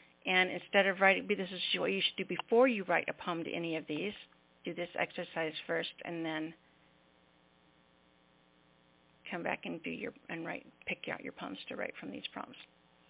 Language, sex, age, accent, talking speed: English, female, 50-69, American, 190 wpm